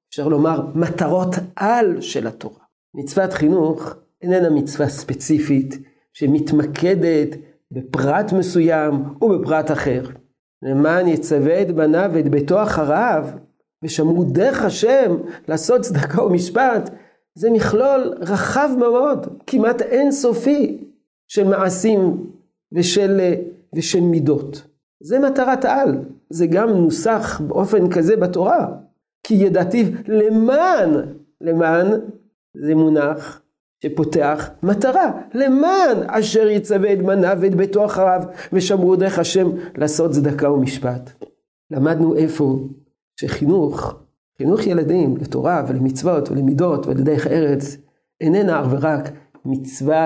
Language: Hebrew